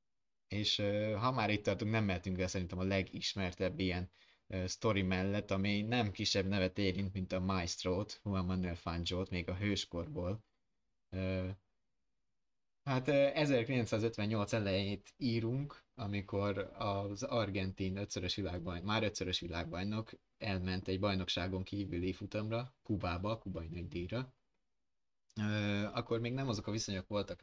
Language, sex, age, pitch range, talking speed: Hungarian, male, 20-39, 90-105 Hz, 130 wpm